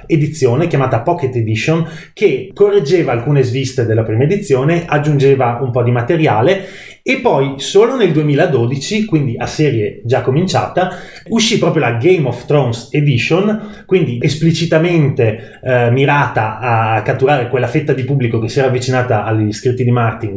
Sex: male